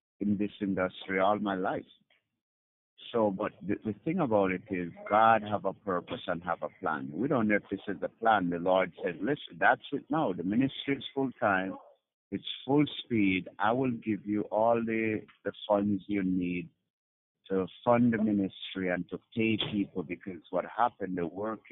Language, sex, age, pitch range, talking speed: English, male, 60-79, 95-115 Hz, 190 wpm